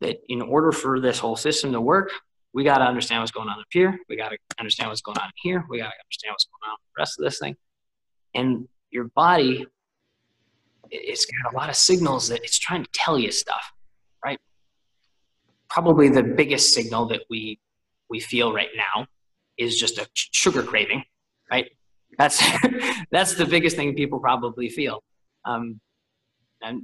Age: 20-39